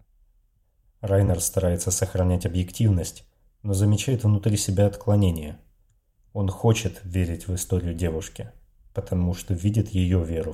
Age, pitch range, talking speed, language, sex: 30-49, 90-105 Hz, 115 wpm, Russian, male